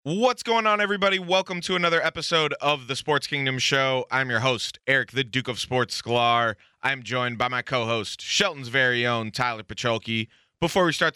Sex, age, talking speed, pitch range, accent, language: male, 20-39, 190 wpm, 115-140 Hz, American, English